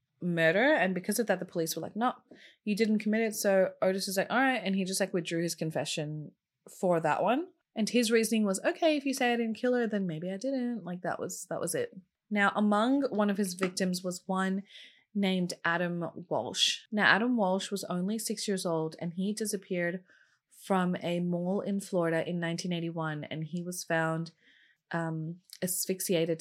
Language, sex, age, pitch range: English, female, 20-39, 165-210 Hz